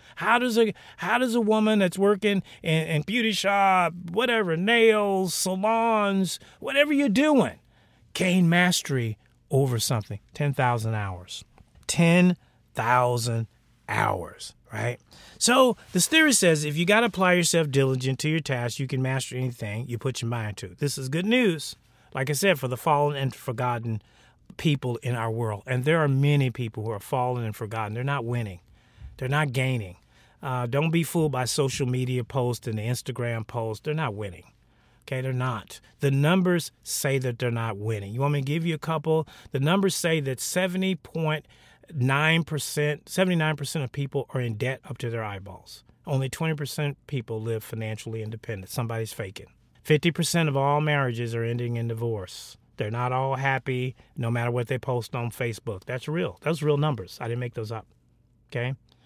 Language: English